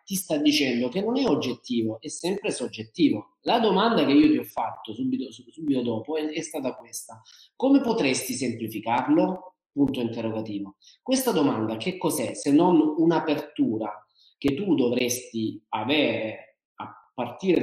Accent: native